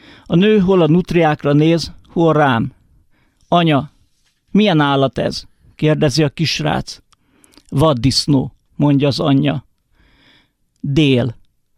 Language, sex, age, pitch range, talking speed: Hungarian, male, 50-69, 140-170 Hz, 100 wpm